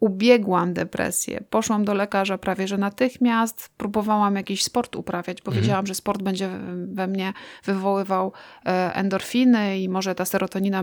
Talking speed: 140 wpm